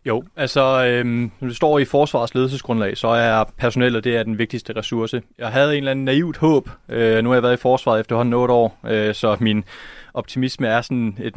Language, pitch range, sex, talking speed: Danish, 110-130 Hz, male, 220 wpm